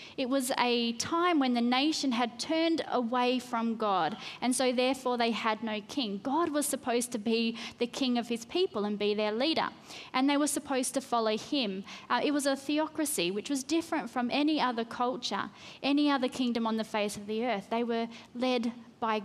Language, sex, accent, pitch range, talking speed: English, female, Australian, 235-290 Hz, 205 wpm